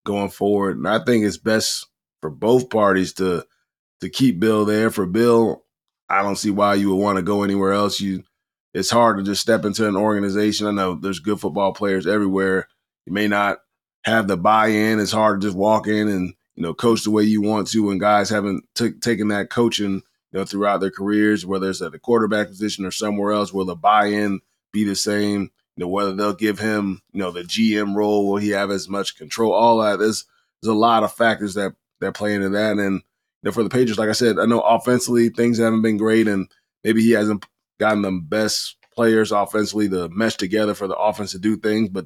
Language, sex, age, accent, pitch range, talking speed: English, male, 20-39, American, 100-110 Hz, 225 wpm